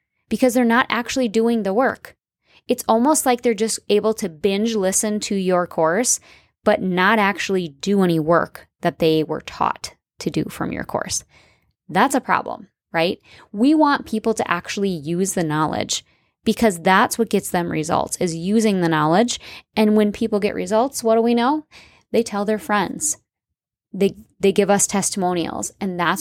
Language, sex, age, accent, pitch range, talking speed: English, female, 10-29, American, 180-230 Hz, 175 wpm